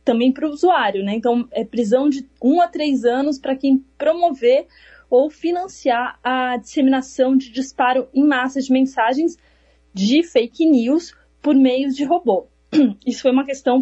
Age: 20-39